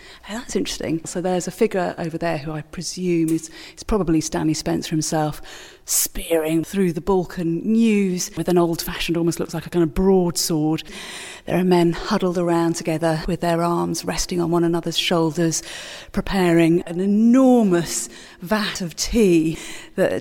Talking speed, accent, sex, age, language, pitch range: 160 wpm, British, female, 40-59, English, 165-200 Hz